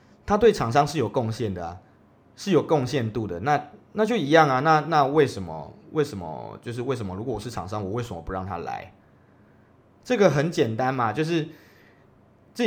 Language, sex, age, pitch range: Chinese, male, 20-39, 100-130 Hz